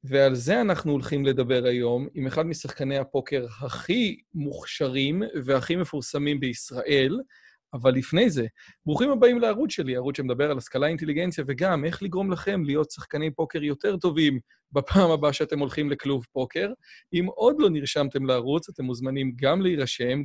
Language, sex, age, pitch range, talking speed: Hebrew, male, 30-49, 130-160 Hz, 150 wpm